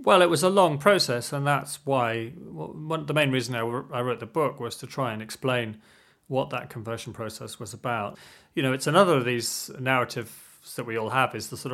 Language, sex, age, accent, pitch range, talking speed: English, male, 30-49, British, 115-140 Hz, 215 wpm